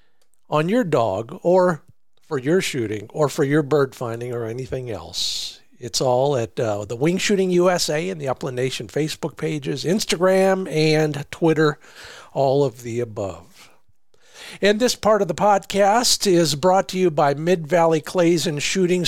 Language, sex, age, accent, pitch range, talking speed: English, male, 50-69, American, 140-185 Hz, 160 wpm